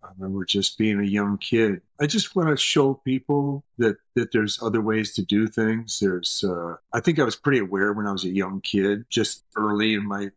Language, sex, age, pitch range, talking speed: English, male, 50-69, 95-115 Hz, 225 wpm